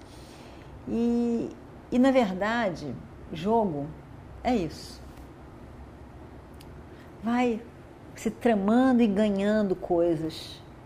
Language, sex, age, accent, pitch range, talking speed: Portuguese, female, 50-69, Brazilian, 150-230 Hz, 70 wpm